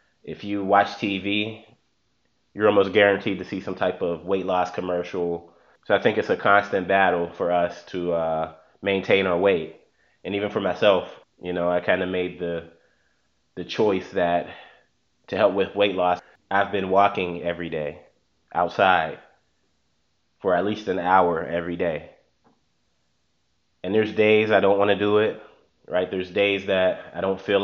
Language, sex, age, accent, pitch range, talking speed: English, male, 20-39, American, 85-100 Hz, 165 wpm